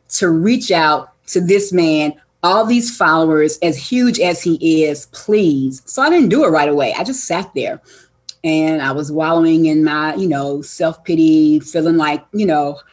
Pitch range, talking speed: 150-190 Hz, 180 wpm